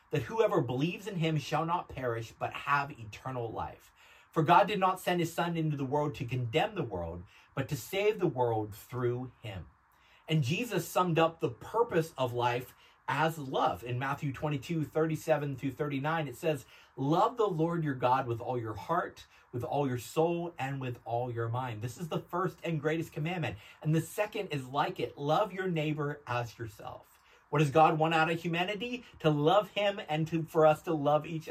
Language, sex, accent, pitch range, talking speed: English, male, American, 130-175 Hz, 205 wpm